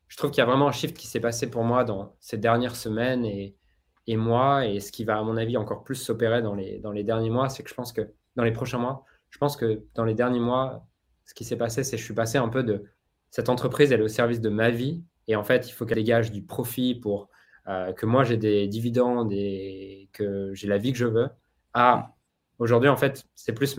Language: French